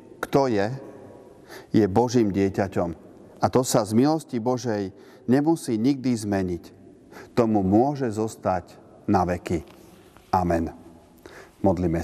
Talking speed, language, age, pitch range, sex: 105 wpm, Slovak, 40-59, 95-115 Hz, male